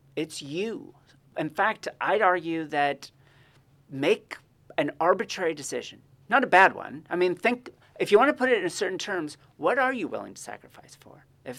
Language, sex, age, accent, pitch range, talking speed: English, male, 40-59, American, 140-190 Hz, 185 wpm